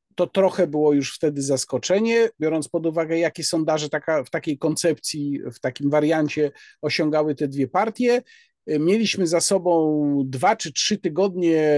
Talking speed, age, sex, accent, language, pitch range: 145 wpm, 50-69, male, native, Polish, 150-200 Hz